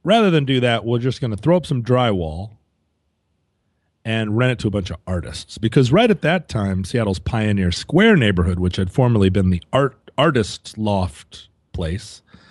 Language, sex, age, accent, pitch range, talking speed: English, male, 40-59, American, 95-130 Hz, 180 wpm